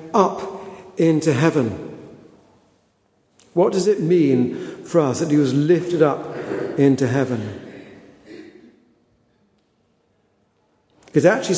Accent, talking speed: British, 95 wpm